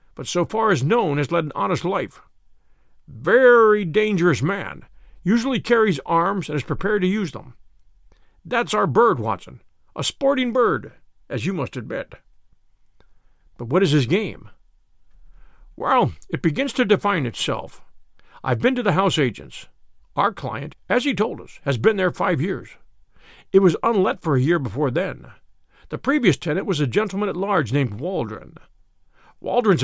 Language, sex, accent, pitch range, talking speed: English, male, American, 130-200 Hz, 160 wpm